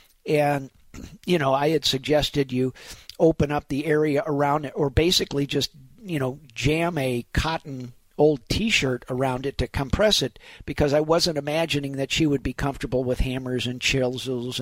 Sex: male